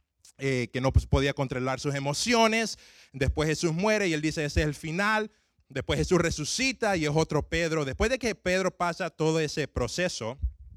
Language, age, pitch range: Spanish, 20-39, 120-165 Hz